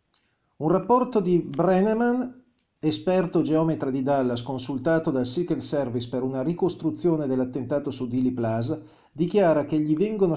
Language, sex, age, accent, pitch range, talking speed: Italian, male, 50-69, native, 135-175 Hz, 135 wpm